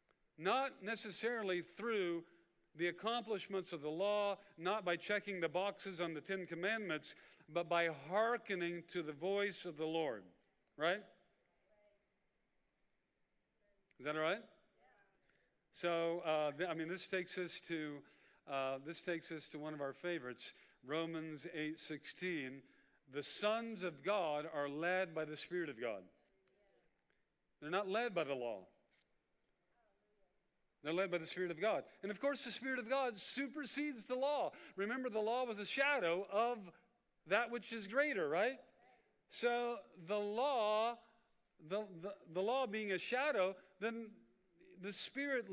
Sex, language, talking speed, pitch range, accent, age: male, English, 145 wpm, 165-220 Hz, American, 50-69